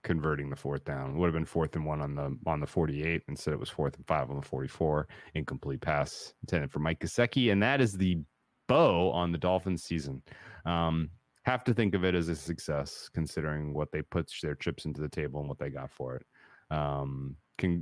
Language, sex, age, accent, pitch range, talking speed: English, male, 30-49, American, 75-100 Hz, 220 wpm